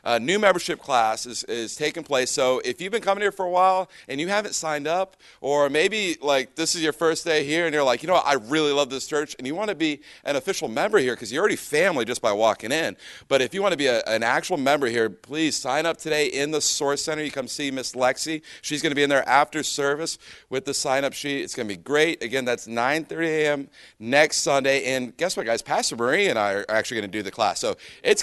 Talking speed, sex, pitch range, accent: 250 wpm, male, 120-160 Hz, American